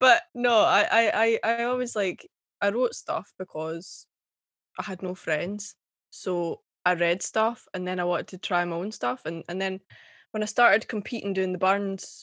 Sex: female